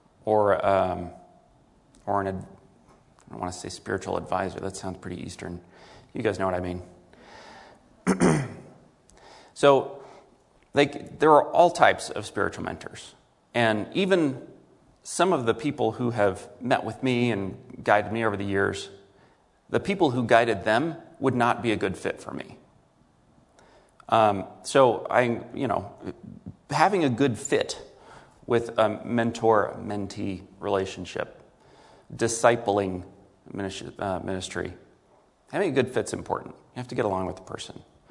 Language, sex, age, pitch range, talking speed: English, male, 30-49, 100-120 Hz, 140 wpm